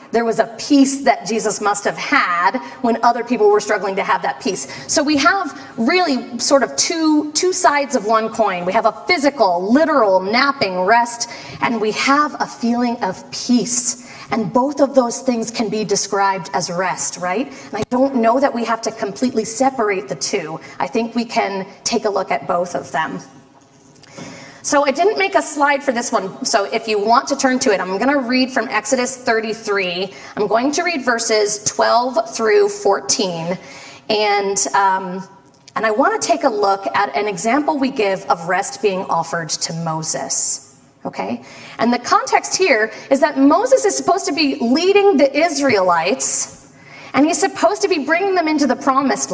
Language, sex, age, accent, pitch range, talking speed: English, female, 30-49, American, 185-275 Hz, 185 wpm